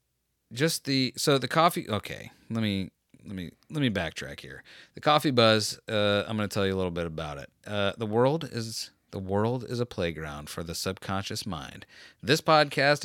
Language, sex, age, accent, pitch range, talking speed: English, male, 30-49, American, 90-115 Hz, 200 wpm